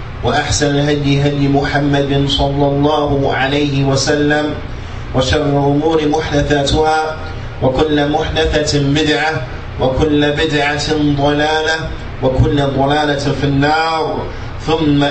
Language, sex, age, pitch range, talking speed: English, male, 30-49, 120-155 Hz, 85 wpm